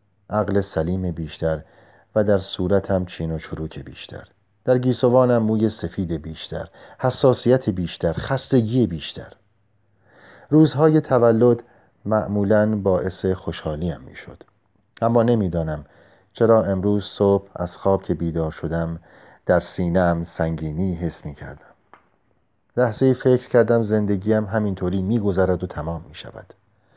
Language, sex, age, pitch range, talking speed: Persian, male, 40-59, 90-115 Hz, 115 wpm